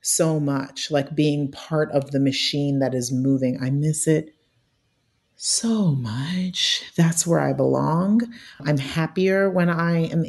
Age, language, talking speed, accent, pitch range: 40-59, English, 145 wpm, American, 140-175 Hz